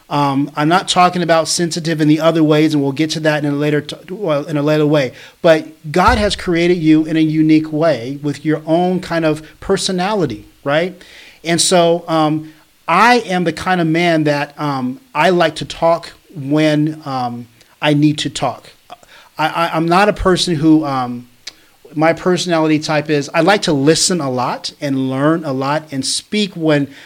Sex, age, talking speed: male, 40-59, 190 wpm